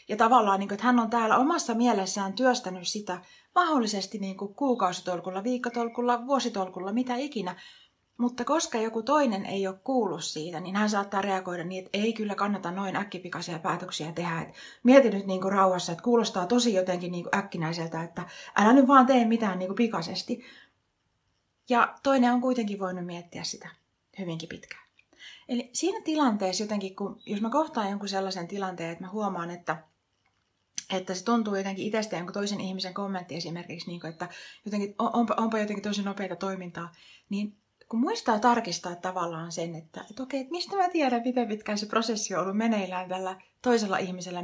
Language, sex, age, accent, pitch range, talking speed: Finnish, female, 30-49, native, 185-245 Hz, 155 wpm